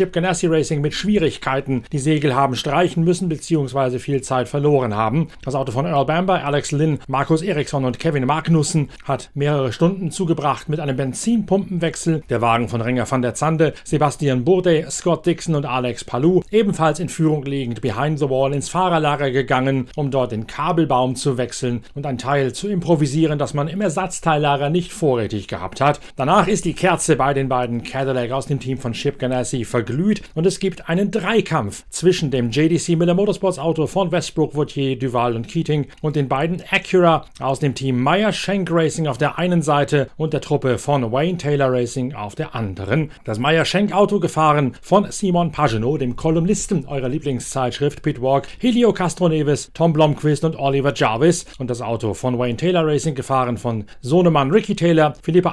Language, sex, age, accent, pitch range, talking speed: German, male, 40-59, German, 130-170 Hz, 180 wpm